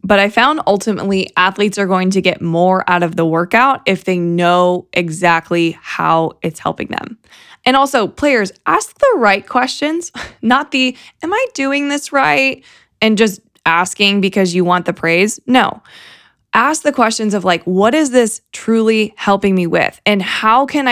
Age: 20-39